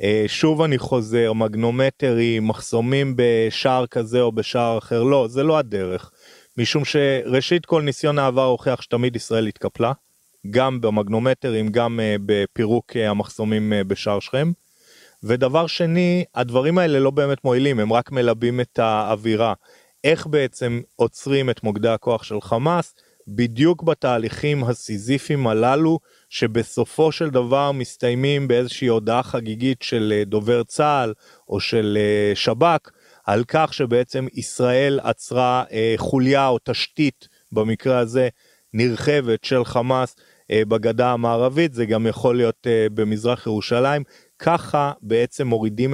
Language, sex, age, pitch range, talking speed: Hebrew, male, 30-49, 110-135 Hz, 120 wpm